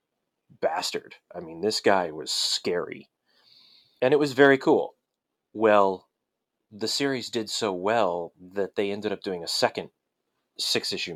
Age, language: 30-49, English